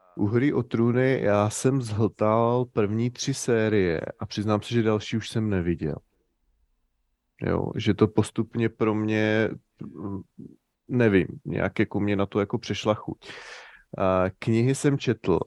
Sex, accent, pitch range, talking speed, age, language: male, native, 100-115 Hz, 145 wpm, 30-49, Czech